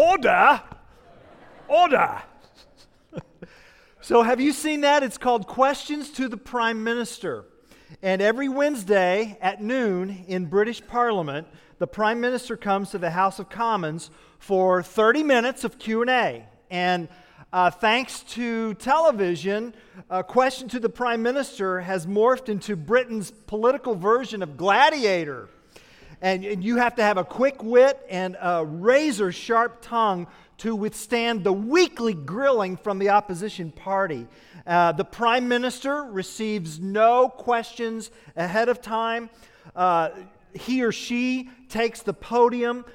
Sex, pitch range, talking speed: male, 190-240 Hz, 130 wpm